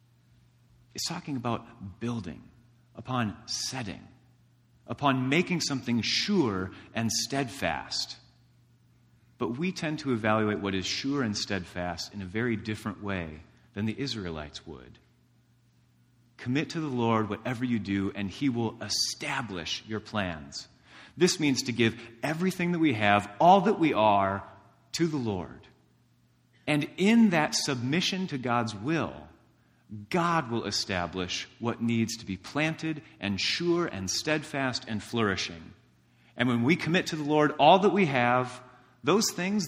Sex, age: male, 30-49